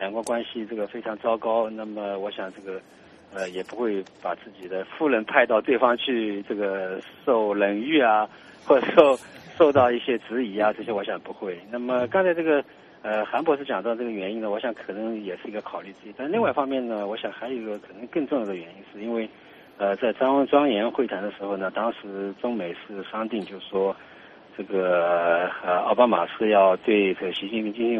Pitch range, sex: 100-115 Hz, male